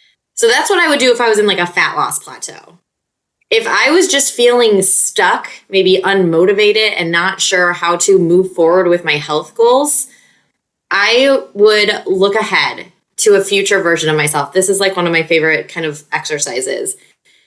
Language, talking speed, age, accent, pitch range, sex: English, 185 wpm, 20-39, American, 170-215 Hz, female